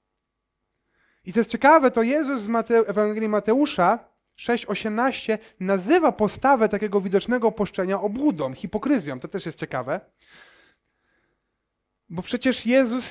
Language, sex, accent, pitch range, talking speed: Polish, male, native, 150-220 Hz, 110 wpm